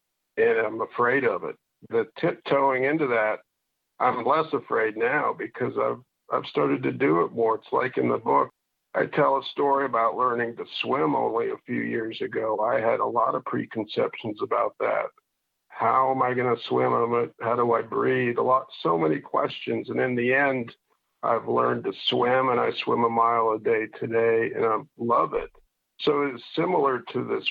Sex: male